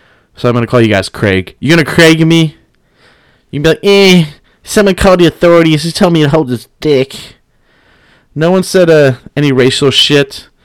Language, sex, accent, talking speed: English, male, American, 185 wpm